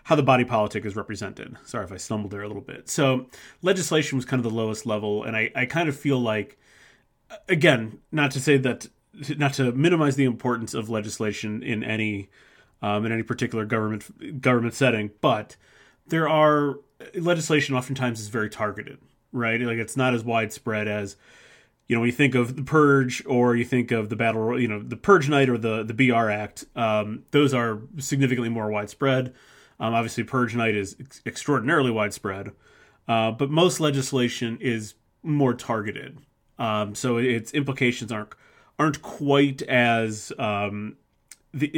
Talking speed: 170 wpm